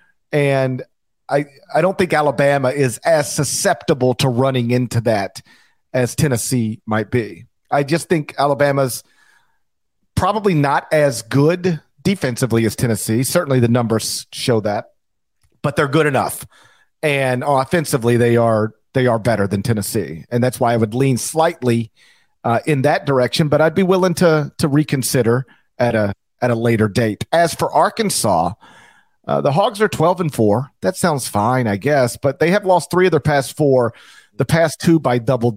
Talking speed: 170 wpm